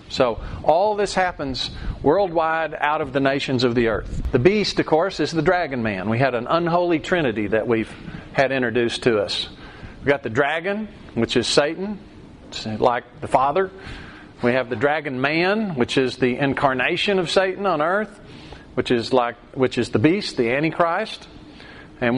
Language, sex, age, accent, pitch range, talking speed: English, male, 40-59, American, 125-160 Hz, 175 wpm